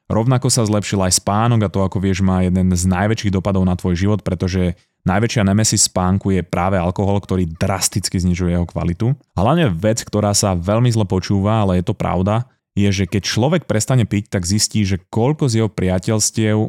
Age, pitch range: 30-49, 95-115 Hz